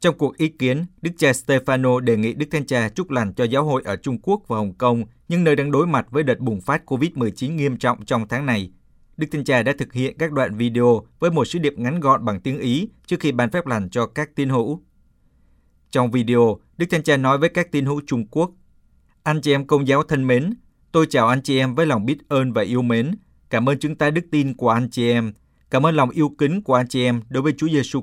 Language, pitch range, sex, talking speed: Vietnamese, 120-150 Hz, male, 255 wpm